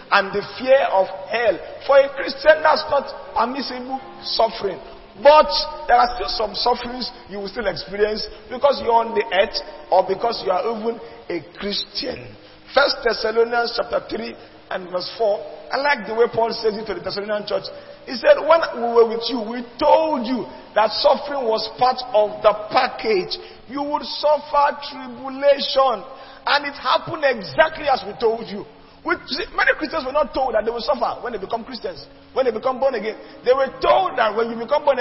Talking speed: 190 wpm